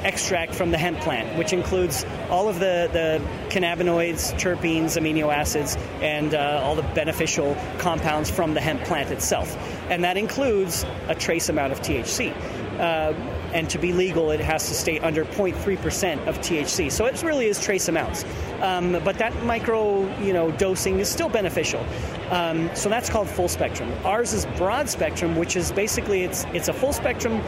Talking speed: 175 wpm